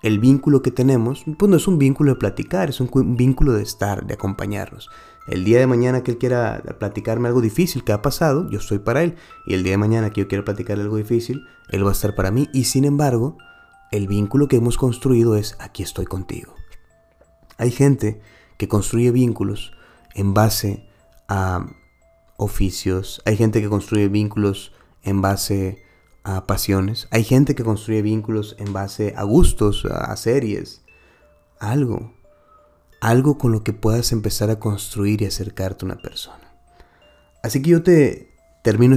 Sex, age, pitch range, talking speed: male, 30-49, 100-125 Hz, 175 wpm